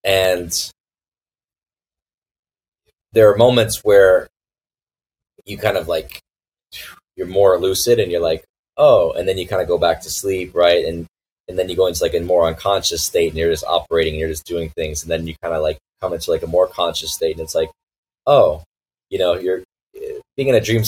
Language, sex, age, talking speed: English, male, 20-39, 200 wpm